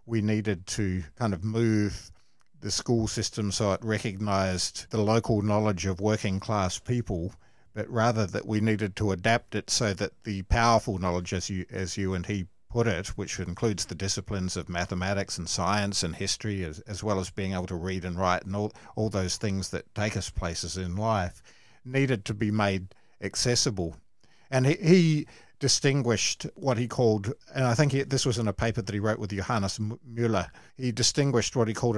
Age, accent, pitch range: 50-69, Australian, 95-115 Hz